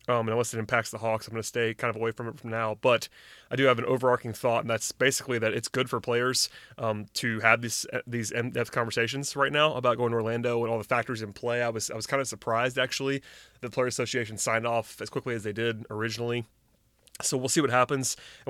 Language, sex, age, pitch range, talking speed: English, male, 20-39, 115-130 Hz, 245 wpm